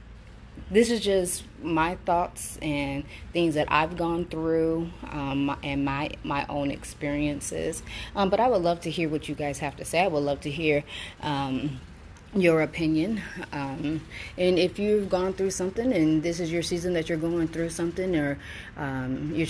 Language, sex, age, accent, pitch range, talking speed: English, female, 30-49, American, 140-170 Hz, 180 wpm